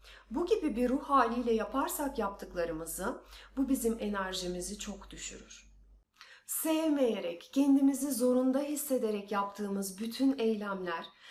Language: Turkish